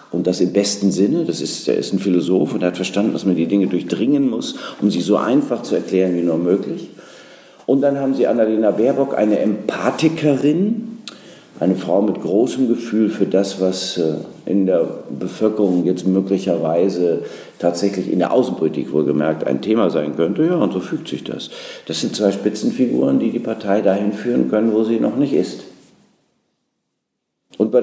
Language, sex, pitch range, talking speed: German, male, 95-115 Hz, 175 wpm